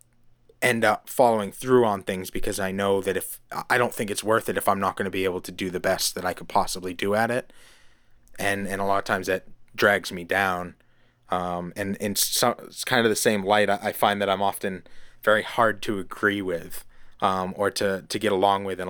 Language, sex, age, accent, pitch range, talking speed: English, male, 20-39, American, 95-105 Hz, 230 wpm